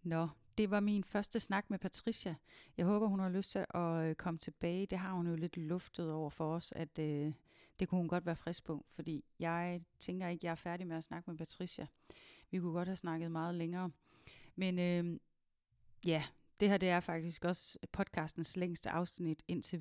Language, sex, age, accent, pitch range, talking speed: Danish, female, 30-49, native, 160-185 Hz, 205 wpm